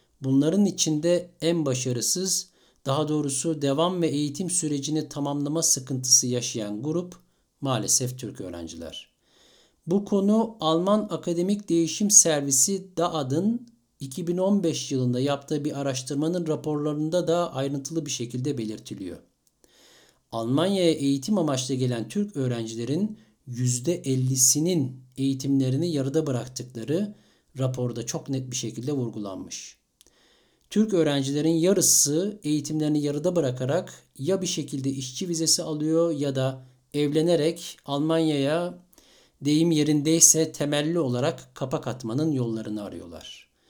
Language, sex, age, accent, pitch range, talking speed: Turkish, male, 60-79, native, 130-170 Hz, 105 wpm